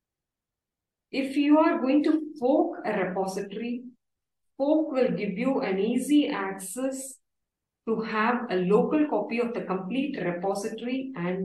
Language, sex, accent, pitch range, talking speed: English, female, Indian, 185-245 Hz, 130 wpm